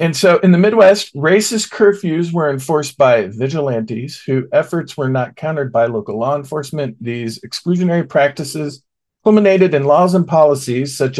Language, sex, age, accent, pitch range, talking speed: English, male, 50-69, American, 130-180 Hz, 155 wpm